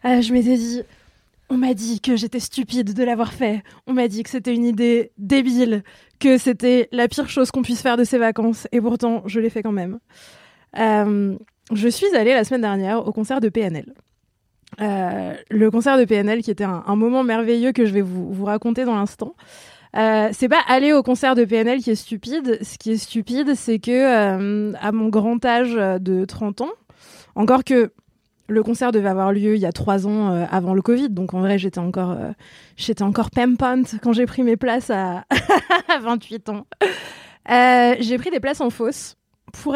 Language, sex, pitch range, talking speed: French, female, 210-250 Hz, 205 wpm